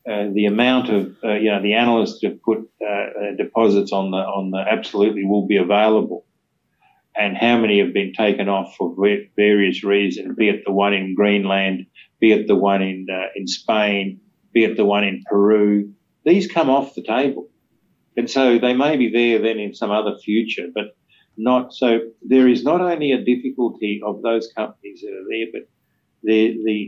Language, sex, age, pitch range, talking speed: English, male, 50-69, 95-115 Hz, 190 wpm